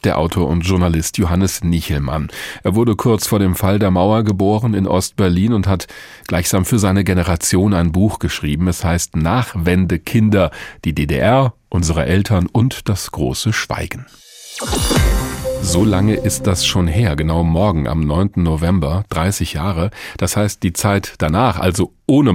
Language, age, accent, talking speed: German, 40-59, German, 155 wpm